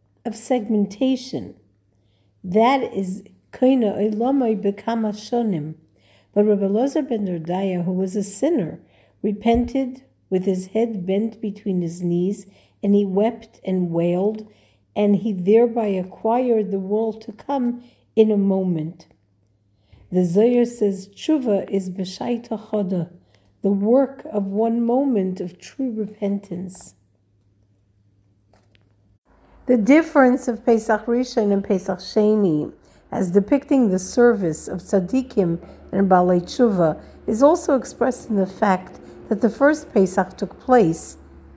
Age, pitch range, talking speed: 50-69, 185-235 Hz, 120 wpm